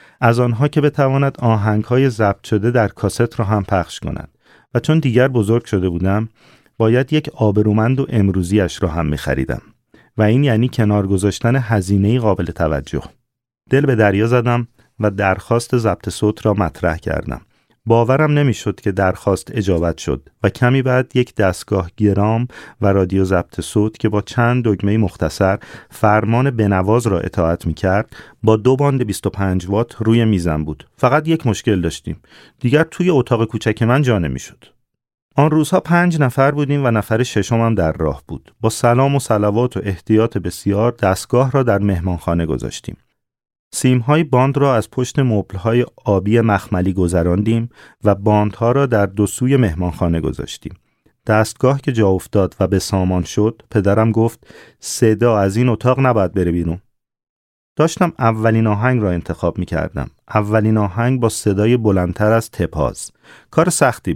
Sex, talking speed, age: male, 155 wpm, 40-59